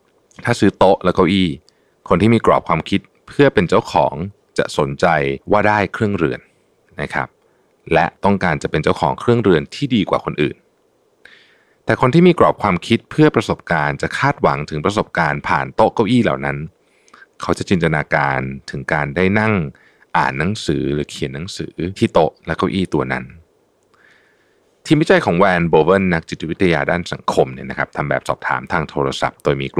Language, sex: Thai, male